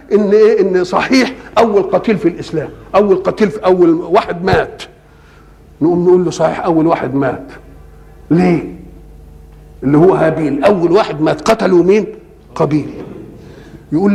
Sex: male